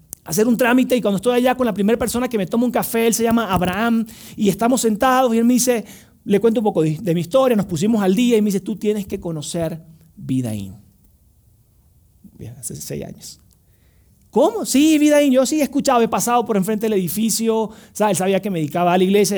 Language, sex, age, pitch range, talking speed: Spanish, male, 30-49, 160-225 Hz, 225 wpm